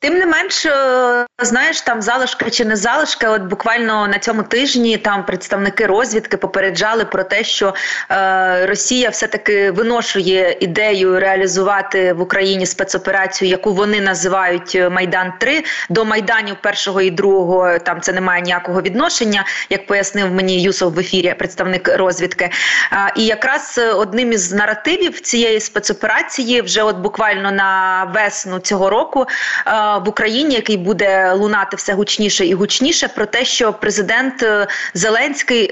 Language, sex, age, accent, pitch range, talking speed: Ukrainian, female, 20-39, native, 195-230 Hz, 140 wpm